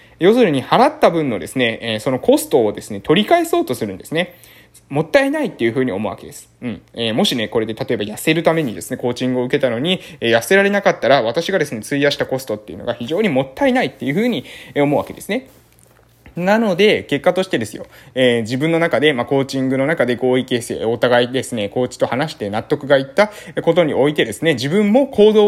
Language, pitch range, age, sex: Japanese, 135-220 Hz, 20-39, male